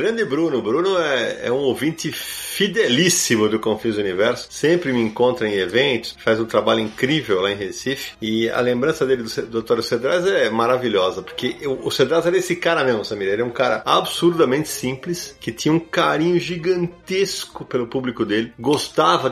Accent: Brazilian